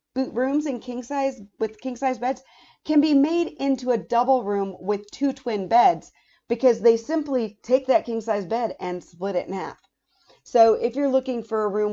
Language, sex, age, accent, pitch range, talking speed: English, female, 40-59, American, 195-265 Hz, 200 wpm